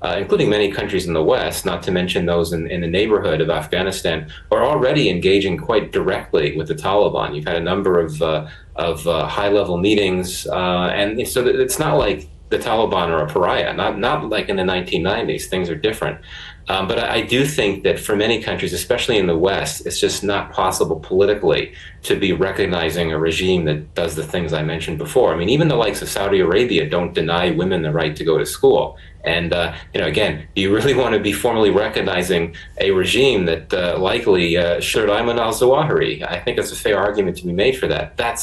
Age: 30-49